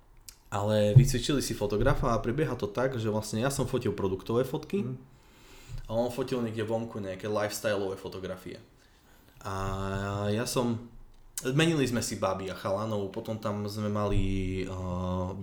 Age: 20-39